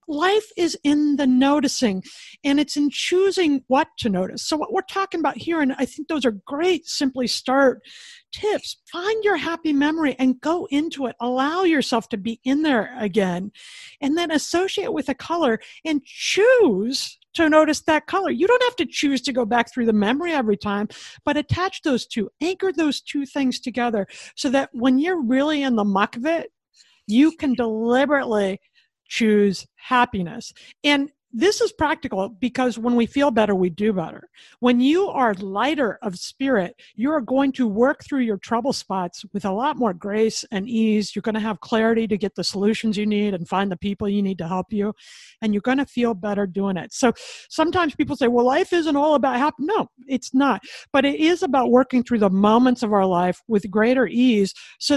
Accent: American